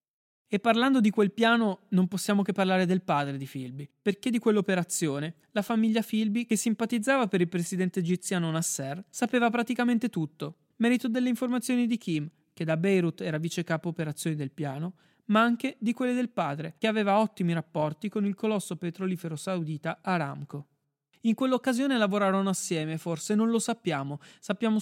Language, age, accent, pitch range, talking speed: Italian, 30-49, native, 165-220 Hz, 165 wpm